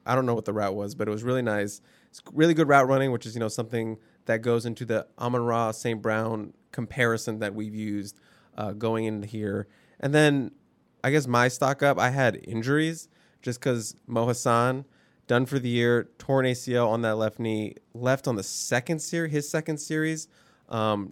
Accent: American